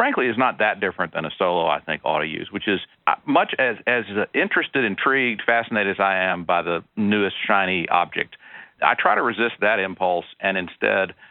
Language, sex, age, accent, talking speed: English, male, 50-69, American, 195 wpm